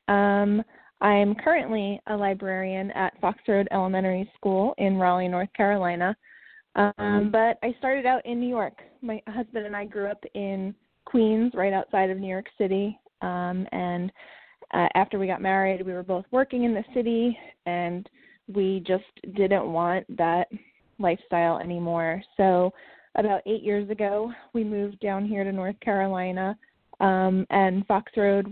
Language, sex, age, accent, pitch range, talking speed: English, female, 20-39, American, 180-210 Hz, 155 wpm